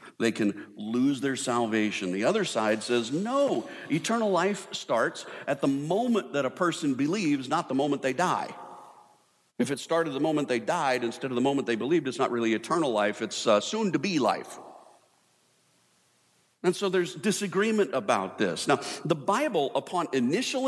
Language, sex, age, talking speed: English, male, 50-69, 175 wpm